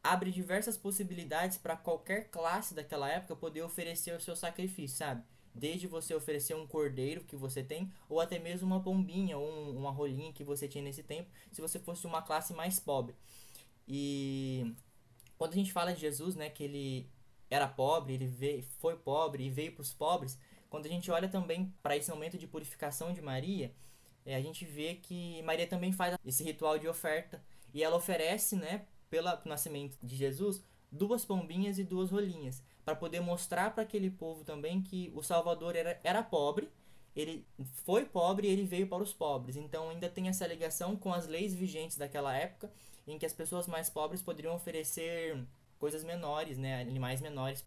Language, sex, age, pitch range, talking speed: Portuguese, male, 10-29, 140-175 Hz, 185 wpm